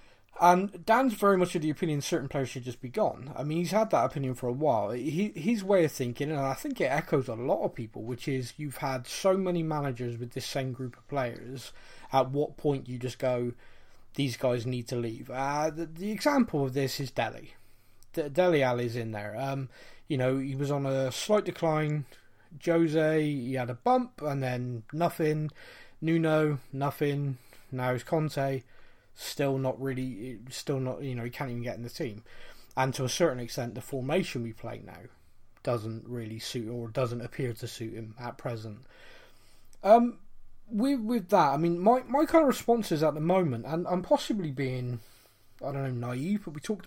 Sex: male